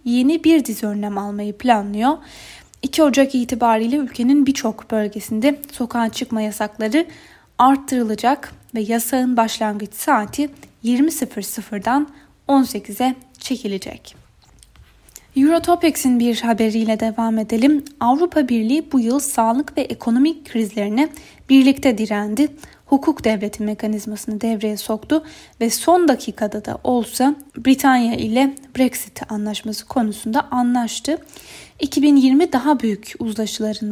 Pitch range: 220-280 Hz